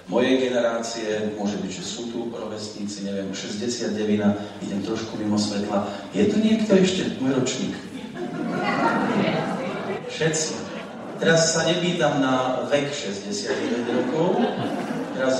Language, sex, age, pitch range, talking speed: Slovak, male, 40-59, 100-135 Hz, 115 wpm